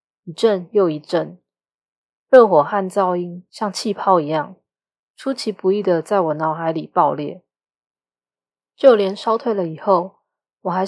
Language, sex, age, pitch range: Chinese, female, 20-39, 150-205 Hz